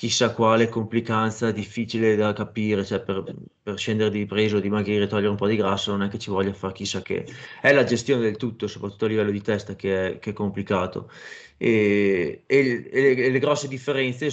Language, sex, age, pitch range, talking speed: Italian, male, 20-39, 100-115 Hz, 215 wpm